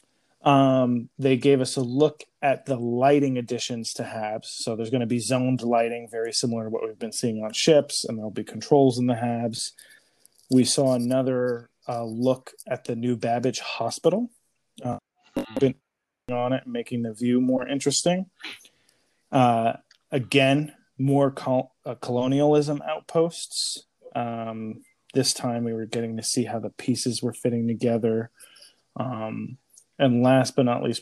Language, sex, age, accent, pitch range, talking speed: English, male, 20-39, American, 115-130 Hz, 160 wpm